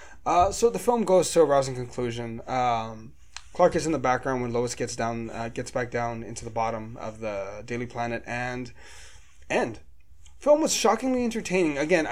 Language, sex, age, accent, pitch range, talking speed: English, male, 20-39, American, 120-155 Hz, 185 wpm